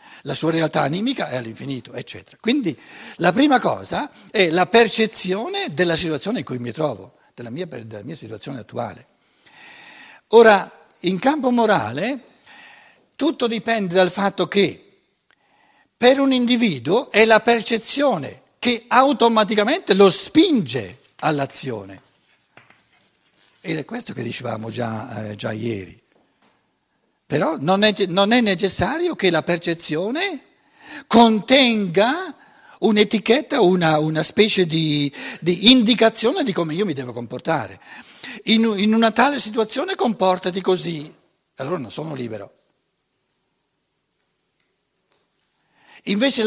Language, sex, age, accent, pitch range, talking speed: Italian, male, 60-79, native, 160-240 Hz, 115 wpm